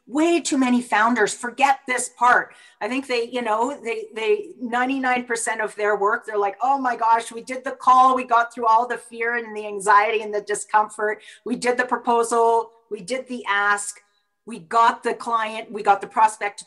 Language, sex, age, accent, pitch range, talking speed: English, female, 30-49, American, 205-255 Hz, 200 wpm